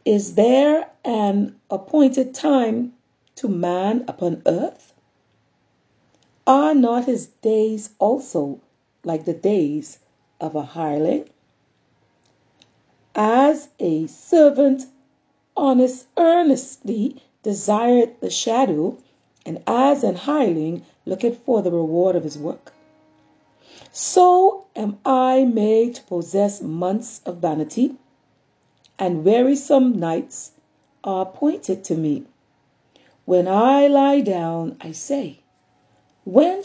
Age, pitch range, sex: 40-59, 175-275 Hz, female